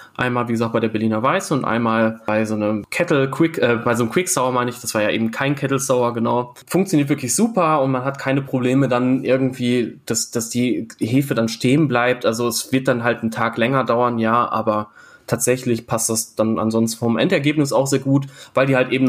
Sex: male